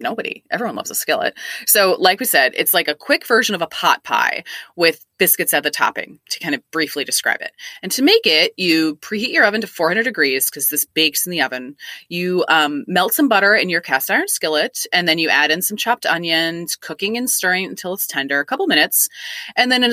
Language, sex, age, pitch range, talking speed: English, female, 20-39, 160-240 Hz, 230 wpm